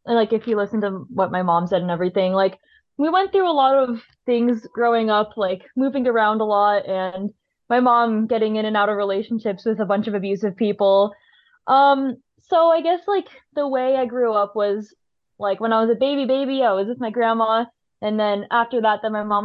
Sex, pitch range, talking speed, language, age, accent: female, 210-280 Hz, 220 wpm, English, 20-39, American